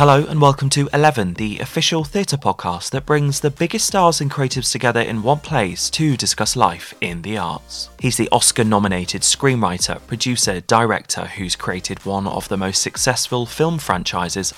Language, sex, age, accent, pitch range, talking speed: English, male, 20-39, British, 105-145 Hz, 170 wpm